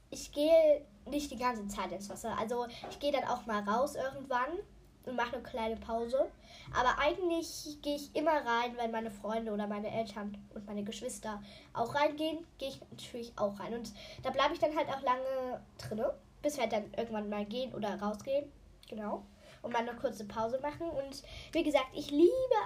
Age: 10-29